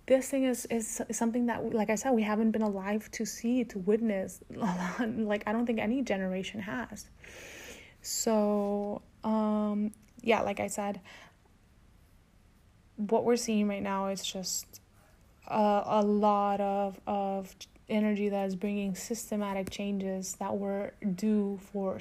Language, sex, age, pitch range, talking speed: English, female, 20-39, 200-240 Hz, 140 wpm